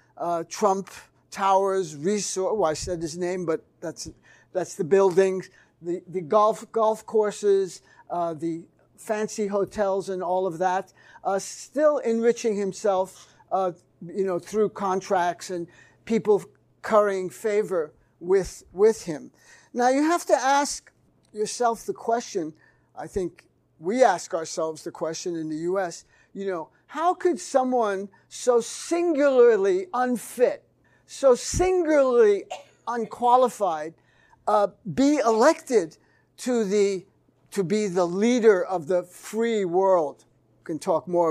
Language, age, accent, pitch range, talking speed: English, 50-69, American, 185-245 Hz, 130 wpm